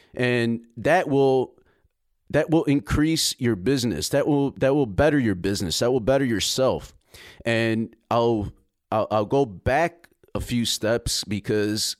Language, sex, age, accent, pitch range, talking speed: English, male, 30-49, American, 115-140 Hz, 145 wpm